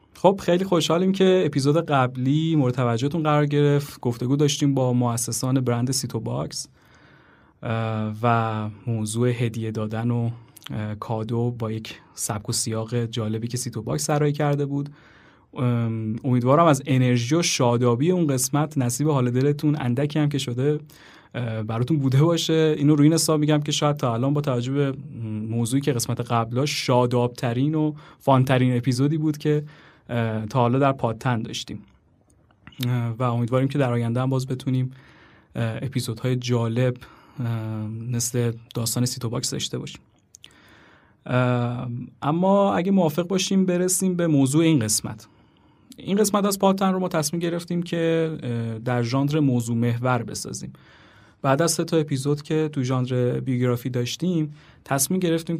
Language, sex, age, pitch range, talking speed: Persian, male, 30-49, 120-150 Hz, 135 wpm